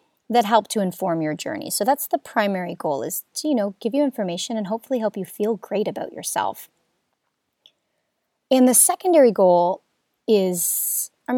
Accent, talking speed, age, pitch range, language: American, 170 wpm, 30-49, 180-250 Hz, English